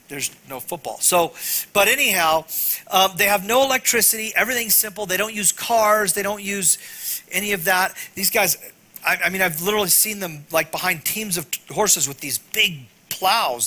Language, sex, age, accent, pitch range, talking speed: English, male, 40-59, American, 175-225 Hz, 185 wpm